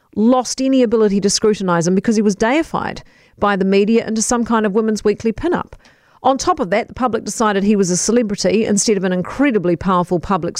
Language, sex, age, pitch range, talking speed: English, female, 40-59, 195-250 Hz, 215 wpm